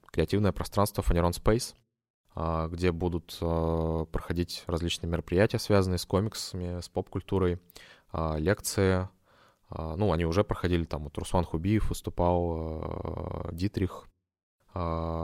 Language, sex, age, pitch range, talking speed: Russian, male, 20-39, 85-100 Hz, 100 wpm